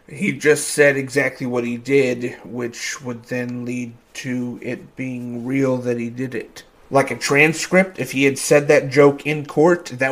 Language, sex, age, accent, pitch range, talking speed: English, male, 30-49, American, 125-160 Hz, 185 wpm